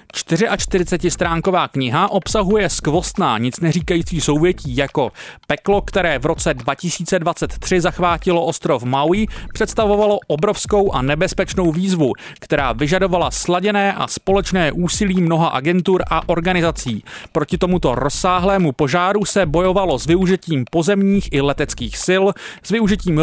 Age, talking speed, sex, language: 30-49, 115 wpm, male, Czech